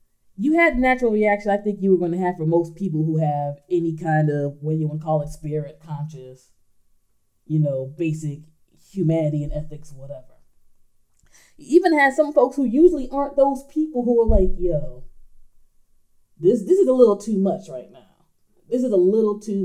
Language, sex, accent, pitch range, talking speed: English, female, American, 145-205 Hz, 185 wpm